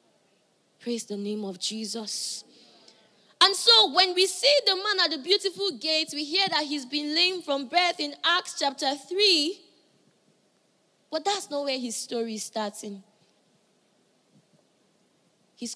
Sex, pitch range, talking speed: female, 240-345 Hz, 140 wpm